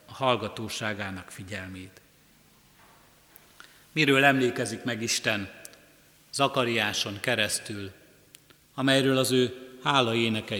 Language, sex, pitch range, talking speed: Hungarian, male, 115-135 Hz, 75 wpm